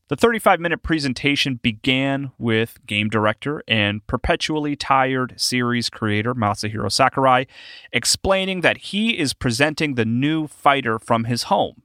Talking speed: 125 wpm